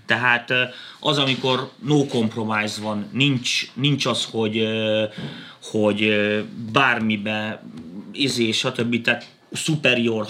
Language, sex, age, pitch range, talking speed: Hungarian, male, 30-49, 110-135 Hz, 95 wpm